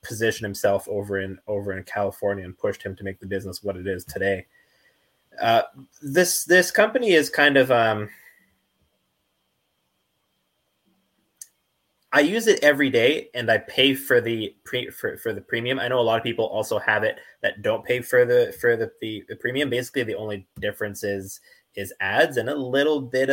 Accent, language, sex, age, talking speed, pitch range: American, English, male, 20-39, 180 wpm, 100-150 Hz